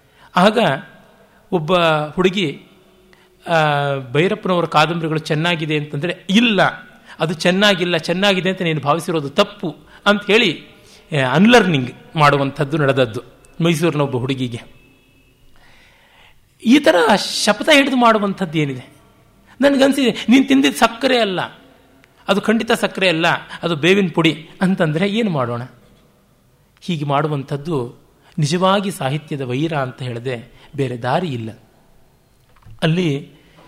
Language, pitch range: Kannada, 140-205 Hz